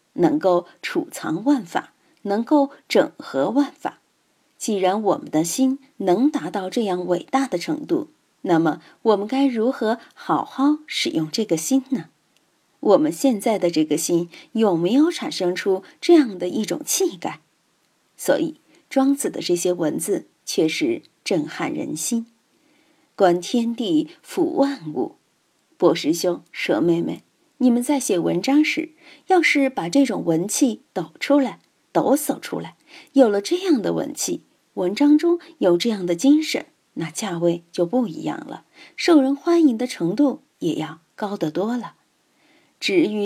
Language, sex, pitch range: Chinese, female, 185-300 Hz